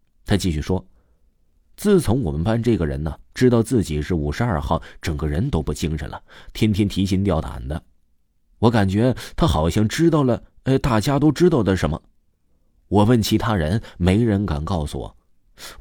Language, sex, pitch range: Chinese, male, 80-120 Hz